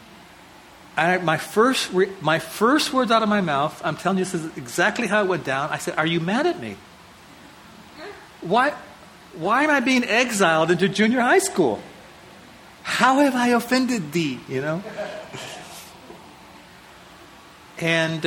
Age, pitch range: 40-59, 155-235 Hz